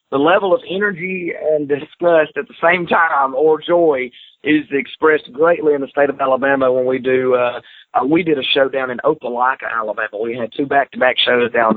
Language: English